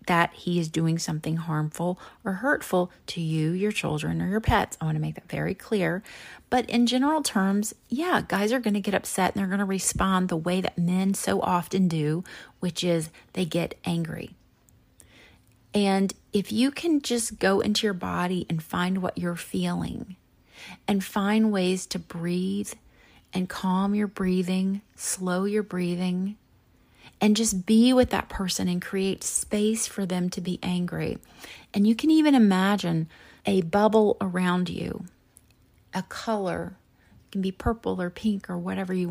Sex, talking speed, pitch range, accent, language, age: female, 165 wpm, 175-210 Hz, American, English, 30-49